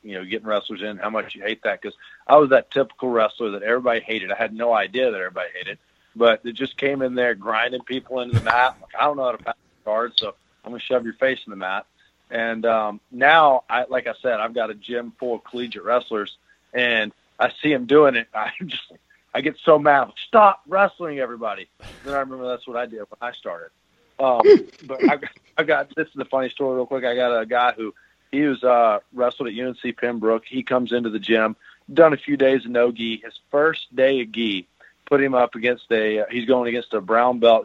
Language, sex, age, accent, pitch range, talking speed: English, male, 40-59, American, 115-140 Hz, 235 wpm